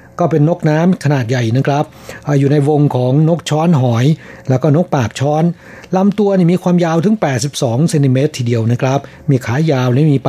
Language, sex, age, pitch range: Thai, male, 60-79, 135-165 Hz